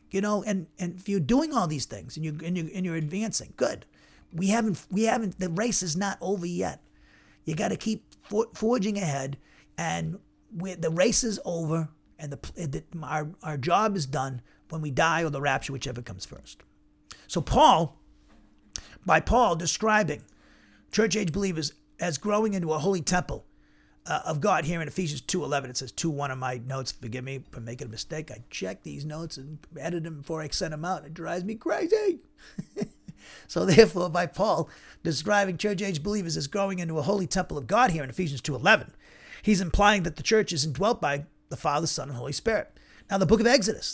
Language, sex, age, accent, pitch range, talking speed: English, male, 40-59, American, 145-200 Hz, 195 wpm